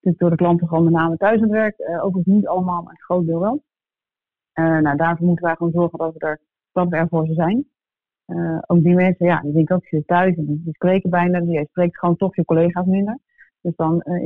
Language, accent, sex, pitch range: Dutch, Dutch, female, 170-190 Hz